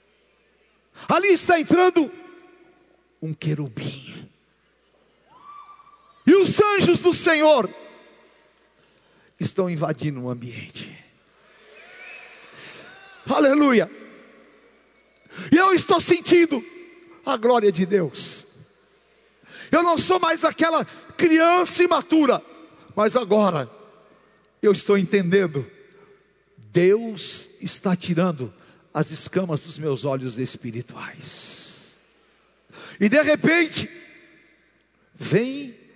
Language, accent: Portuguese, Brazilian